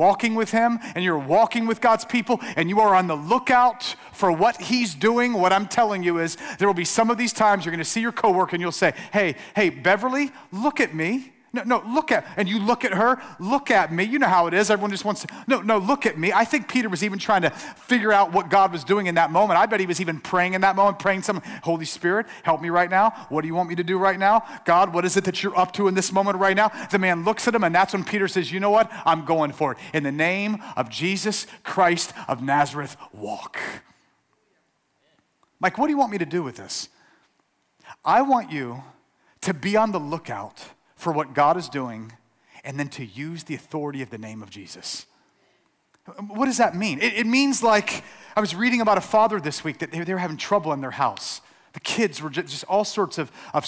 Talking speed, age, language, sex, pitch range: 245 wpm, 40-59, English, male, 165-225 Hz